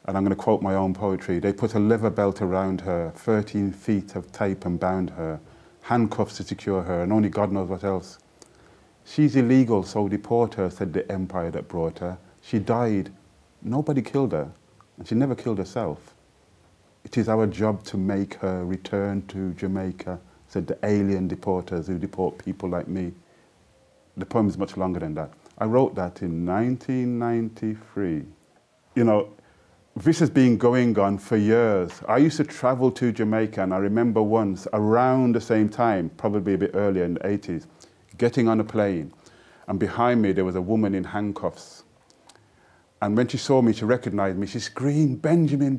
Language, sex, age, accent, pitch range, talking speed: English, male, 30-49, British, 95-135 Hz, 180 wpm